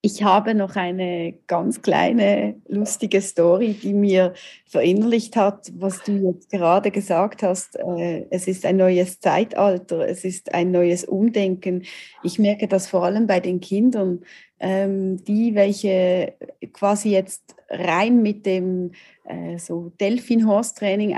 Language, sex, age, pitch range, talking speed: German, female, 30-49, 180-220 Hz, 125 wpm